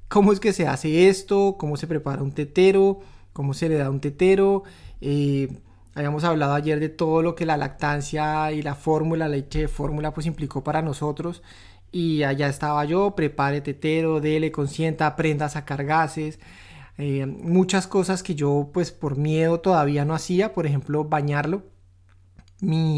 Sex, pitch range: male, 150-185 Hz